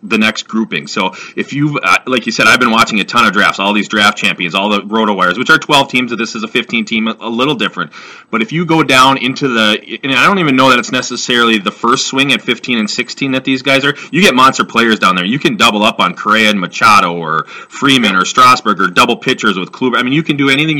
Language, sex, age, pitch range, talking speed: English, male, 30-49, 110-145 Hz, 270 wpm